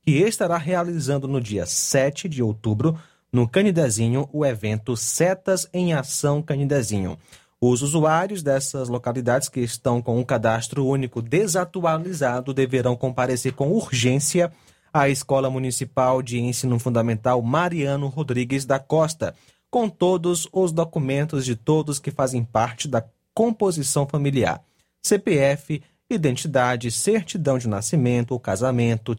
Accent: Brazilian